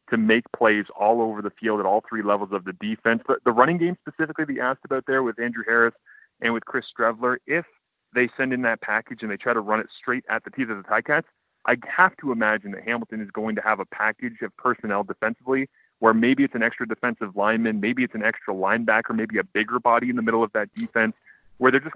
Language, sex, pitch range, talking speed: English, male, 110-125 Hz, 245 wpm